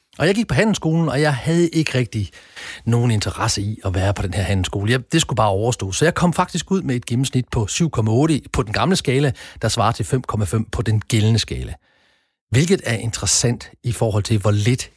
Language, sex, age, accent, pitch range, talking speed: Danish, male, 40-59, native, 105-140 Hz, 215 wpm